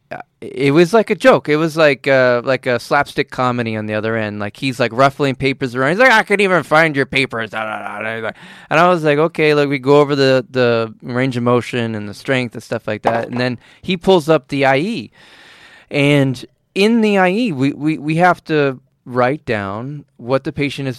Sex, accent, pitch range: male, American, 115-150 Hz